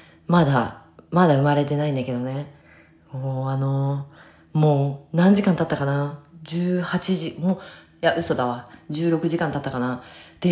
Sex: female